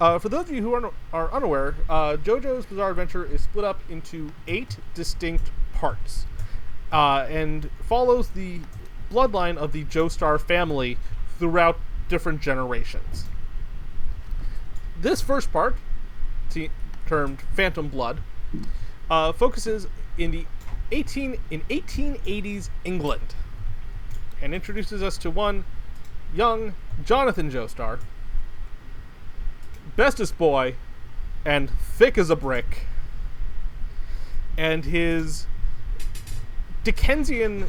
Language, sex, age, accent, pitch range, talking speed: English, male, 30-49, American, 115-195 Hz, 105 wpm